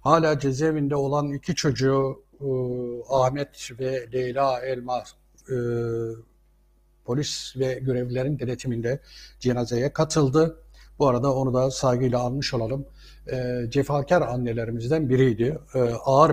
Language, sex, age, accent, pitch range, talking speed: Turkish, male, 60-79, native, 125-155 Hz, 110 wpm